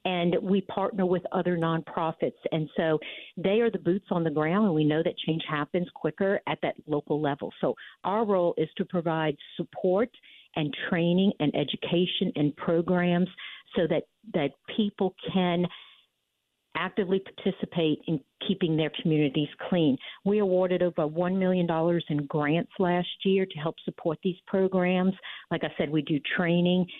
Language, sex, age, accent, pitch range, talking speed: English, female, 50-69, American, 160-190 Hz, 160 wpm